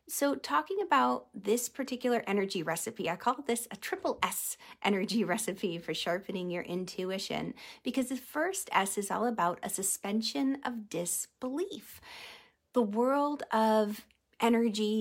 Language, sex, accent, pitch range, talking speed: English, female, American, 195-270 Hz, 135 wpm